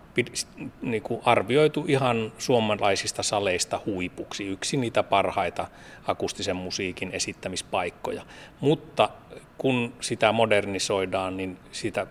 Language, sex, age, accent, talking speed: Finnish, male, 30-49, native, 85 wpm